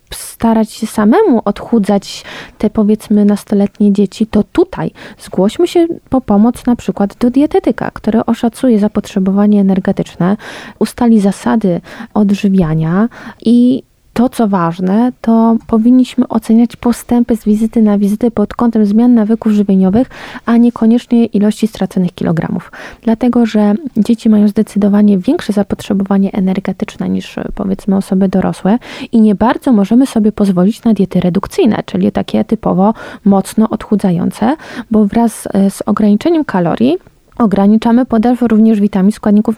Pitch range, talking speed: 200-235 Hz, 125 wpm